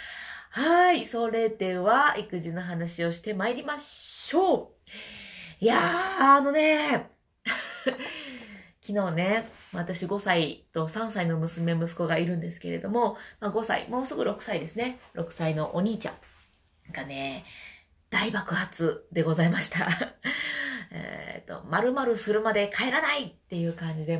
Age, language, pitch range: 30-49, Japanese, 165-225 Hz